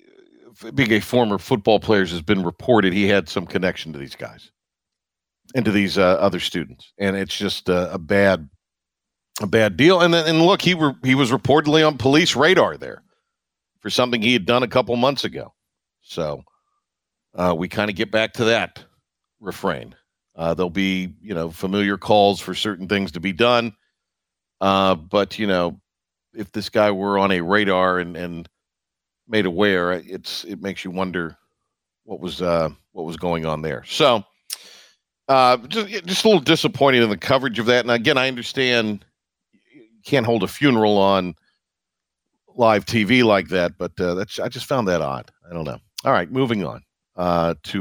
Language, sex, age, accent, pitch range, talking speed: English, male, 50-69, American, 90-125 Hz, 185 wpm